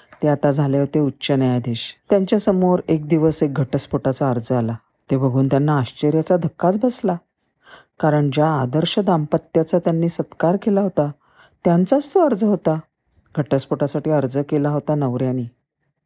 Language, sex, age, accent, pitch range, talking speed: Marathi, female, 50-69, native, 140-195 Hz, 135 wpm